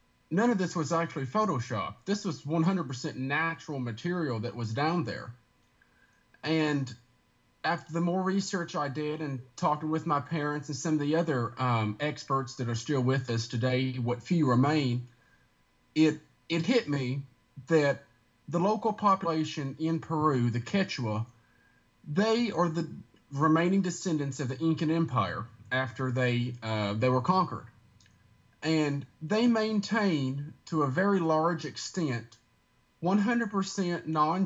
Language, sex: English, male